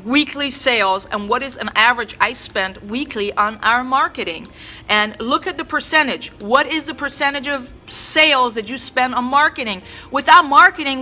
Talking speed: 170 wpm